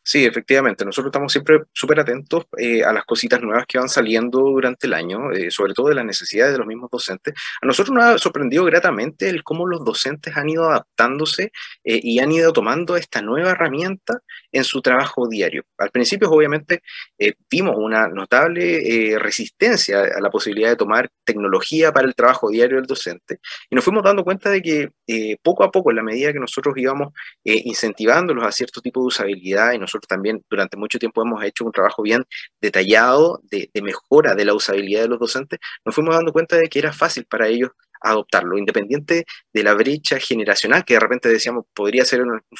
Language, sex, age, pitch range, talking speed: Spanish, male, 30-49, 115-155 Hz, 200 wpm